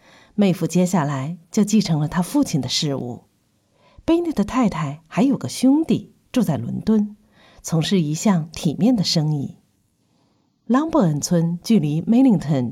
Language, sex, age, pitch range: Chinese, female, 50-69, 165-235 Hz